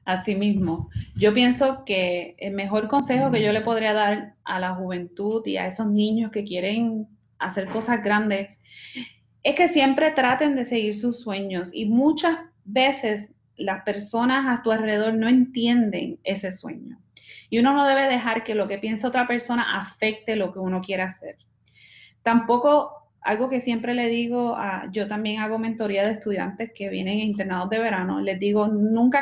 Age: 30-49